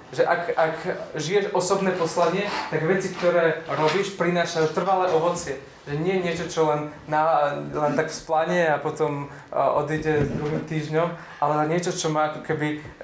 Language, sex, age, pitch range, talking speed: Slovak, male, 20-39, 155-185 Hz, 155 wpm